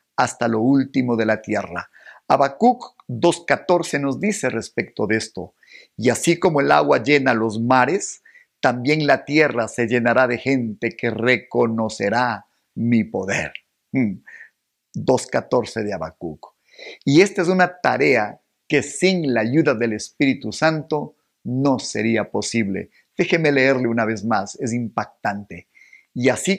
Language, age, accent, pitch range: Spanish, 50-69, Mexican, 115-165 Hz